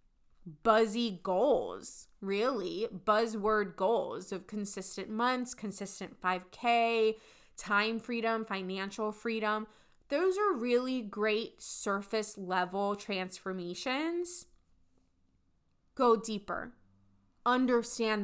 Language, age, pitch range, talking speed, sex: English, 20-39, 200-255 Hz, 80 wpm, female